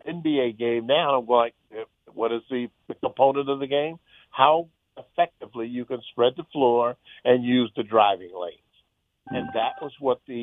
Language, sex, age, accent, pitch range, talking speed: English, male, 50-69, American, 115-160 Hz, 160 wpm